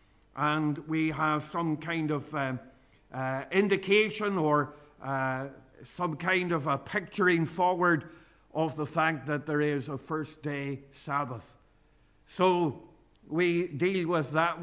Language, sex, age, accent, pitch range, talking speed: English, male, 50-69, Irish, 140-170 Hz, 130 wpm